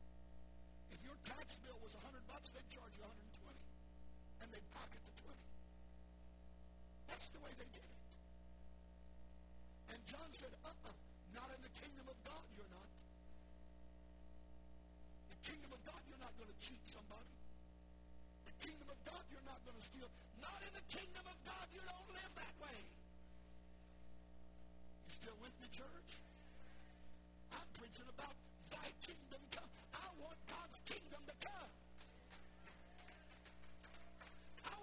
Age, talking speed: 50-69, 140 wpm